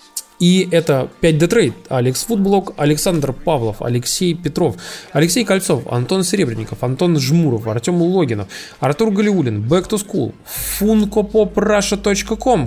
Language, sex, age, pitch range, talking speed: Russian, male, 20-39, 135-200 Hz, 105 wpm